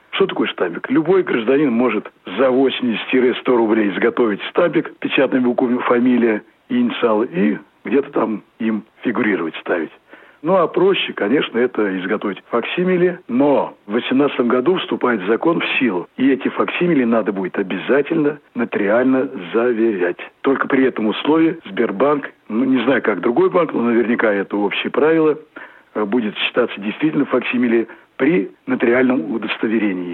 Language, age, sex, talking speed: Russian, 60-79, male, 135 wpm